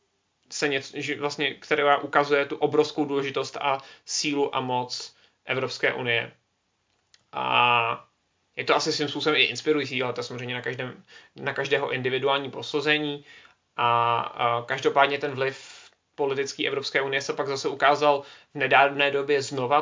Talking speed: 145 wpm